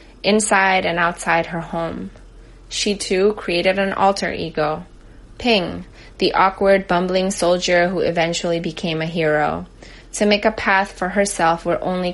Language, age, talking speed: English, 20-39, 145 wpm